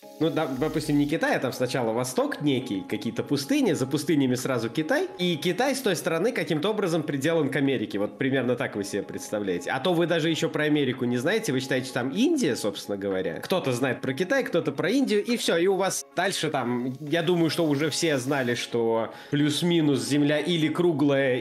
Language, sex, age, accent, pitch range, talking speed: Russian, male, 20-39, native, 130-165 Hz, 200 wpm